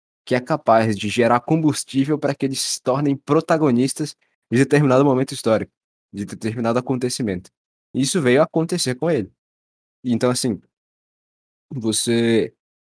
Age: 20-39